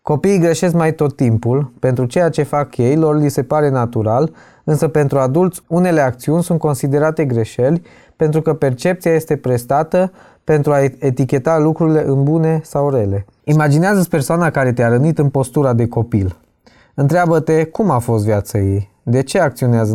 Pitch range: 120-150 Hz